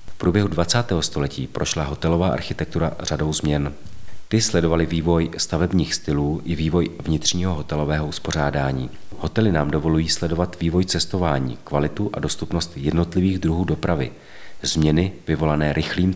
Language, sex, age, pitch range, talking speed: Czech, male, 40-59, 75-85 Hz, 125 wpm